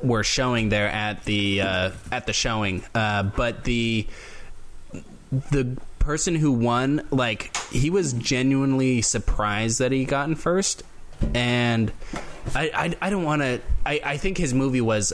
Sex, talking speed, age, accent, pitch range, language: male, 155 wpm, 20-39, American, 100-135 Hz, English